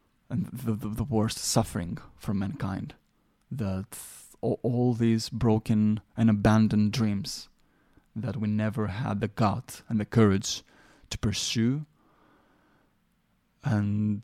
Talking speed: 115 wpm